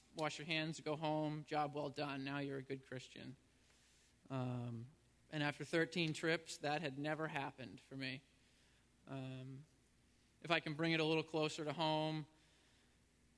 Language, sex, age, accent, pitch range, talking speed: English, male, 20-39, American, 135-155 Hz, 155 wpm